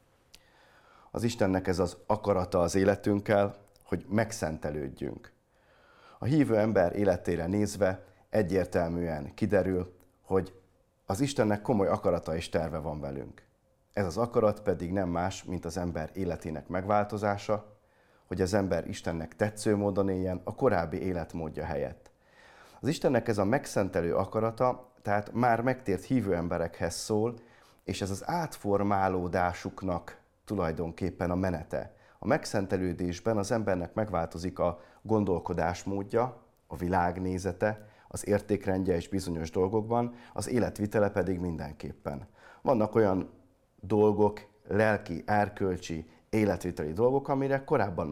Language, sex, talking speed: Hungarian, male, 115 wpm